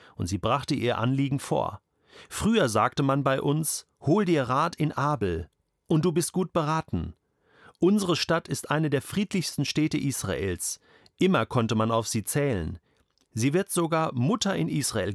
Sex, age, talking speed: male, 40-59, 160 wpm